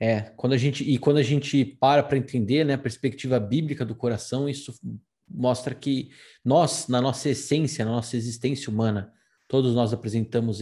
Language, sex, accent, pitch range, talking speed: Portuguese, male, Brazilian, 120-145 Hz, 155 wpm